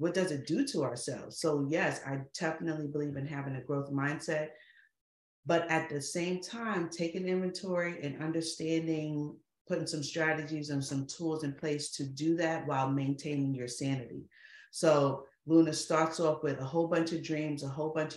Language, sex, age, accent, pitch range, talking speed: English, female, 40-59, American, 140-160 Hz, 175 wpm